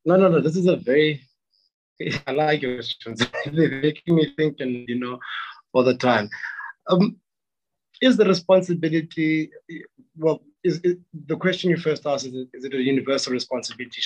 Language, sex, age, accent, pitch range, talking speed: English, male, 30-49, South African, 135-180 Hz, 160 wpm